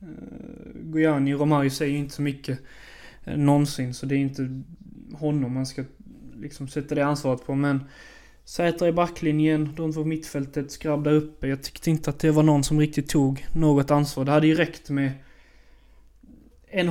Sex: male